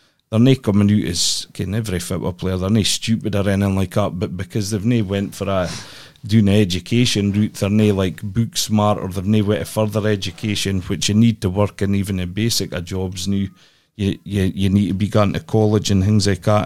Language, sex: English, male